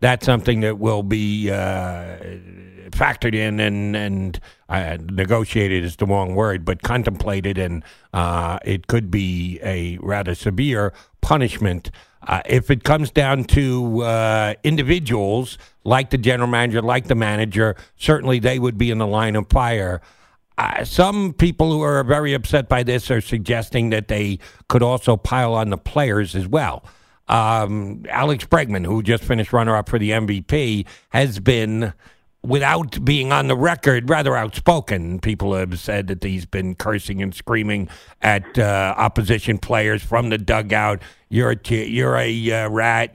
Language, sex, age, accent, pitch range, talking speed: English, male, 60-79, American, 100-140 Hz, 155 wpm